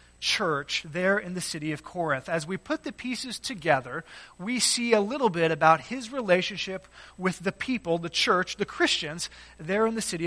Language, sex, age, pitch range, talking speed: English, male, 30-49, 175-230 Hz, 185 wpm